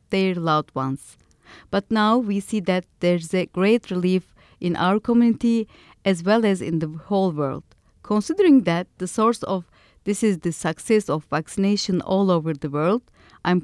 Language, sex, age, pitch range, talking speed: English, female, 40-59, 165-205 Hz, 165 wpm